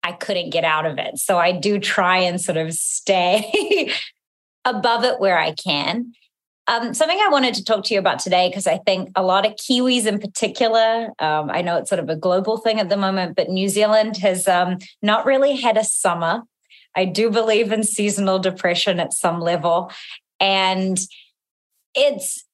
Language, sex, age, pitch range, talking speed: English, female, 30-49, 175-220 Hz, 190 wpm